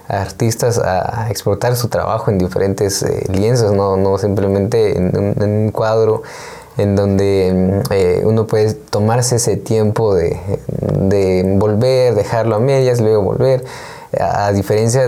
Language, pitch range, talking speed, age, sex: Spanish, 100-120 Hz, 145 wpm, 20-39, male